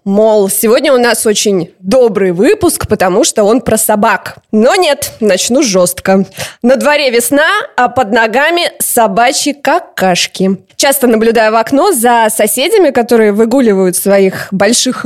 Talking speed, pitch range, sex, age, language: 135 wpm, 200-270 Hz, female, 20-39, Russian